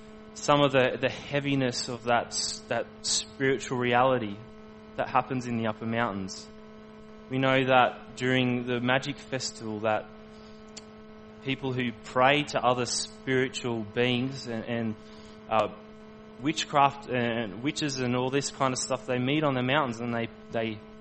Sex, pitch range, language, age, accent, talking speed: male, 110-165 Hz, English, 20-39, Australian, 145 wpm